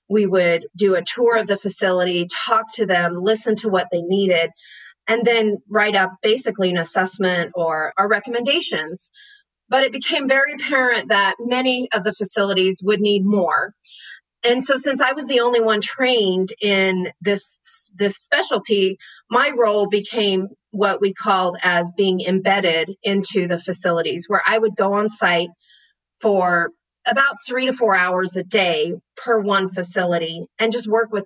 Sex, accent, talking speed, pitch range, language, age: female, American, 165 wpm, 185-225 Hz, English, 30-49